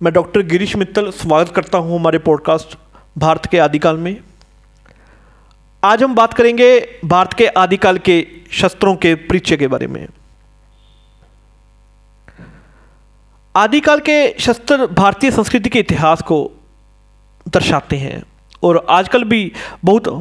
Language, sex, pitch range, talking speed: Hindi, male, 165-225 Hz, 120 wpm